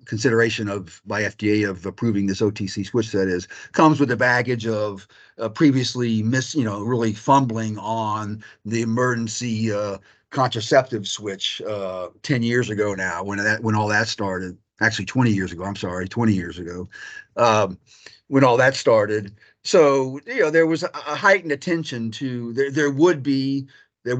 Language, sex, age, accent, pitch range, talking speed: English, male, 50-69, American, 105-125 Hz, 170 wpm